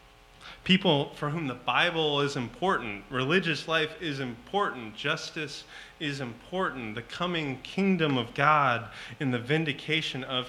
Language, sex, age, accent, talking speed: English, male, 30-49, American, 130 wpm